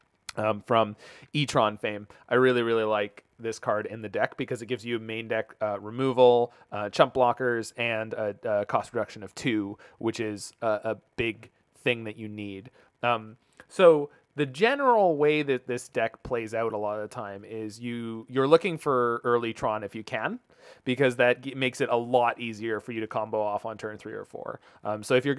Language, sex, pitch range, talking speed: English, male, 110-130 Hz, 205 wpm